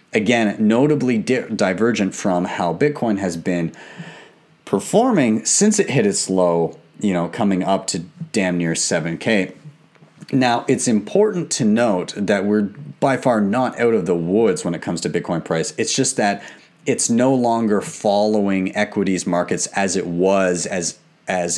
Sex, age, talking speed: male, 30-49, 155 wpm